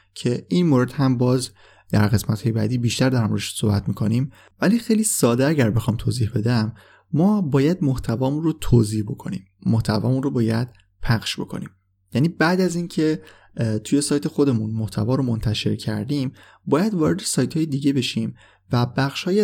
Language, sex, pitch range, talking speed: Persian, male, 110-140 Hz, 160 wpm